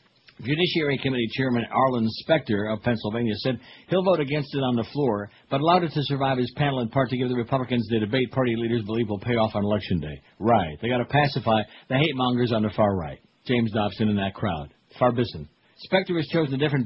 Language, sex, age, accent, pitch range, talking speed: English, male, 60-79, American, 115-140 Hz, 220 wpm